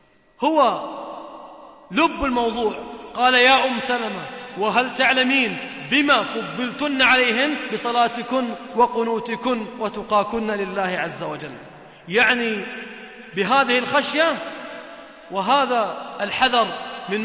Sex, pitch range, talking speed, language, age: male, 205-260 Hz, 85 wpm, Arabic, 30-49